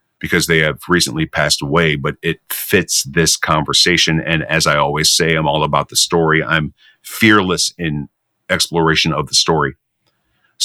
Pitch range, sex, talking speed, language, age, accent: 80-100 Hz, male, 165 wpm, English, 40-59, American